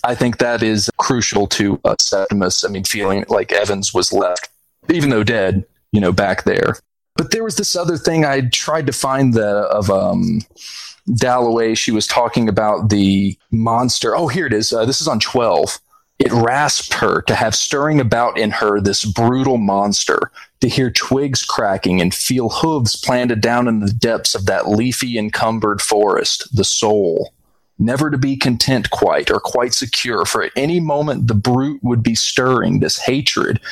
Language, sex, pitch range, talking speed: English, male, 110-140 Hz, 180 wpm